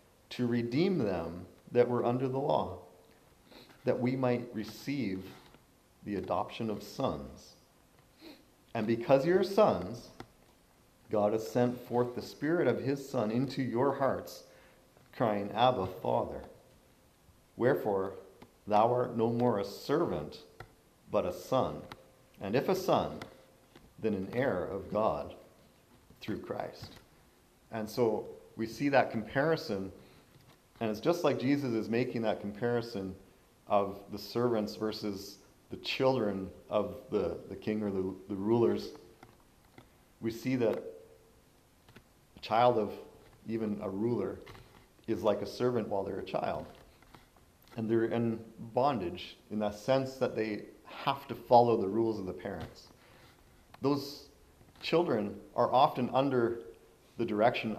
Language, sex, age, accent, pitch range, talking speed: English, male, 40-59, American, 105-125 Hz, 130 wpm